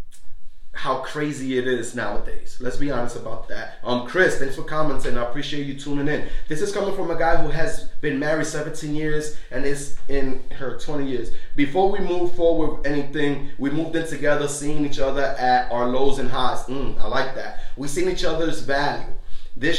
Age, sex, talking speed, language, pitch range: 30-49, male, 200 wpm, English, 135-165 Hz